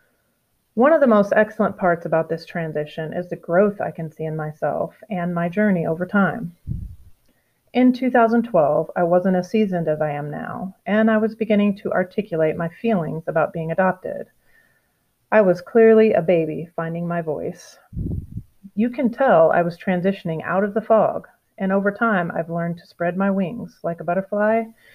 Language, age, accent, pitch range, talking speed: English, 30-49, American, 170-210 Hz, 175 wpm